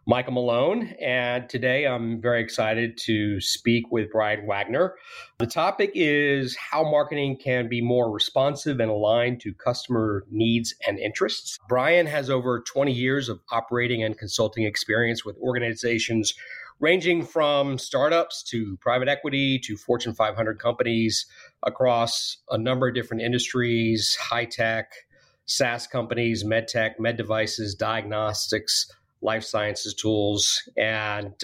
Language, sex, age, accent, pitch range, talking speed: English, male, 40-59, American, 110-125 Hz, 130 wpm